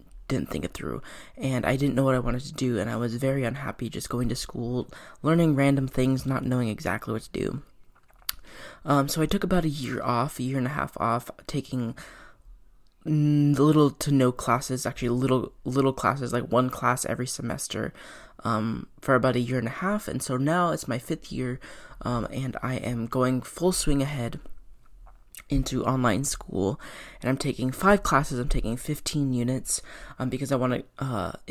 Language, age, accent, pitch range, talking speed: English, 20-39, American, 120-140 Hz, 190 wpm